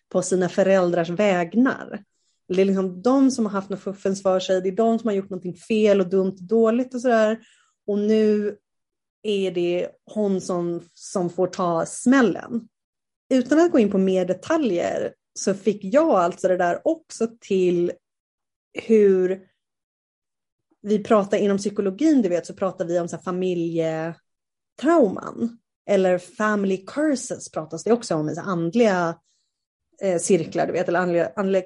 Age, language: 30-49, Swedish